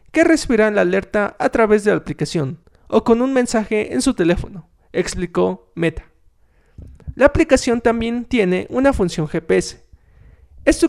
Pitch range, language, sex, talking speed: 175-240 Hz, Spanish, male, 150 wpm